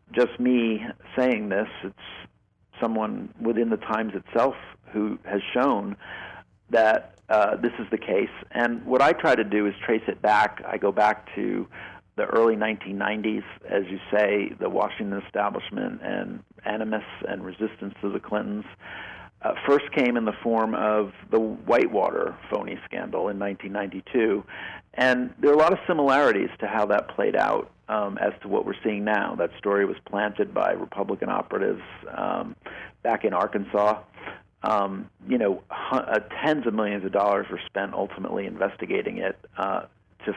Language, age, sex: English, 50-69, male